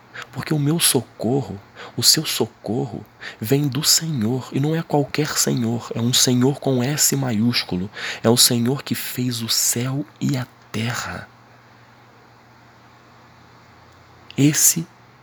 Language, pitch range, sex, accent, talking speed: Portuguese, 115-135 Hz, male, Brazilian, 125 wpm